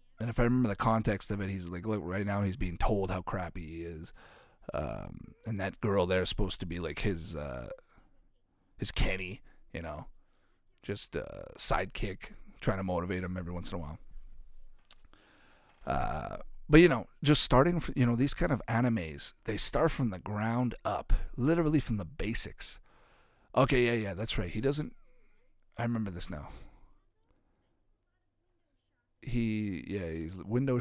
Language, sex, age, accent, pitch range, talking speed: English, male, 40-59, American, 90-120 Hz, 165 wpm